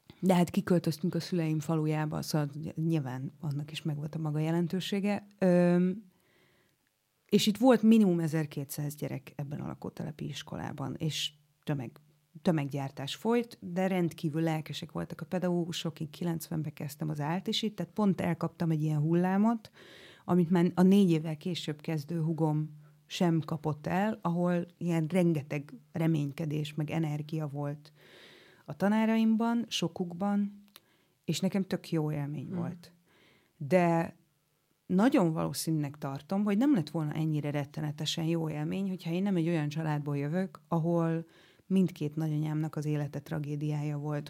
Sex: female